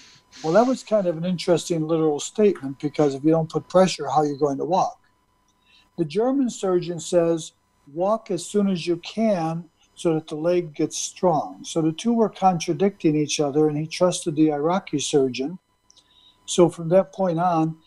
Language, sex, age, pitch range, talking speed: English, male, 60-79, 145-180 Hz, 185 wpm